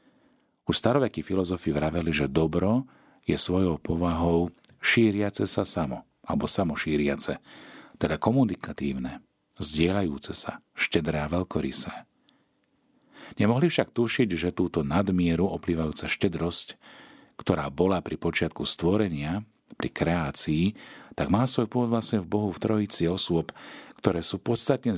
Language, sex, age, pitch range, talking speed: Slovak, male, 50-69, 80-110 Hz, 120 wpm